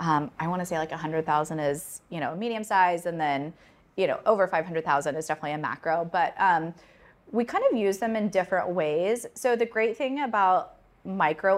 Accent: American